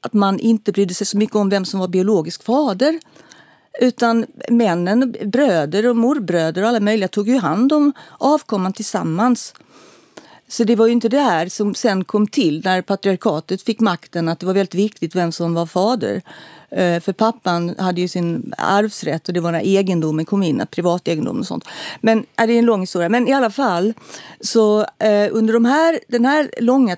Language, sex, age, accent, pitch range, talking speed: Swedish, female, 50-69, native, 185-230 Hz, 190 wpm